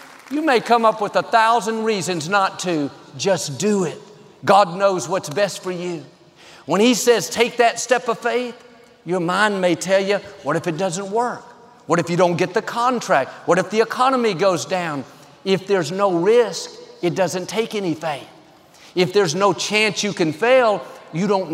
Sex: male